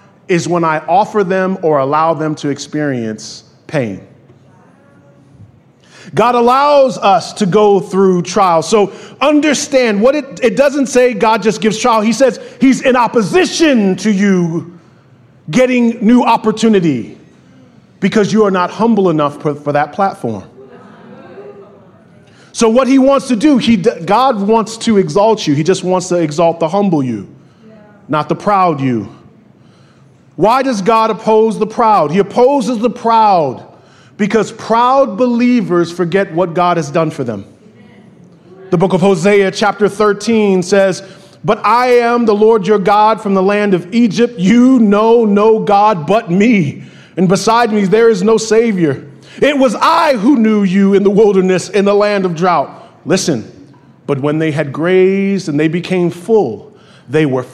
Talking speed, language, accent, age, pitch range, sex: 155 wpm, English, American, 30-49, 175-230 Hz, male